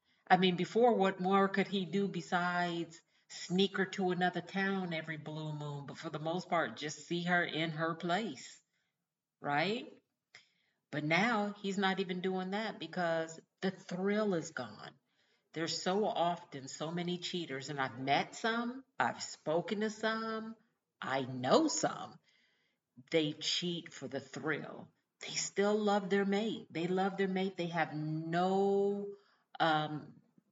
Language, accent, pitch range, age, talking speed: English, American, 155-195 Hz, 50-69, 150 wpm